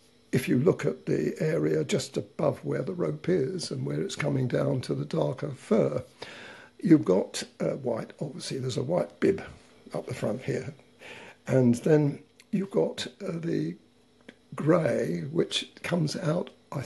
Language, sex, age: English, male, 60-79